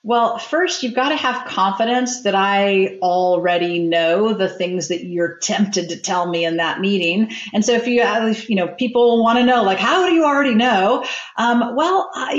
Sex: female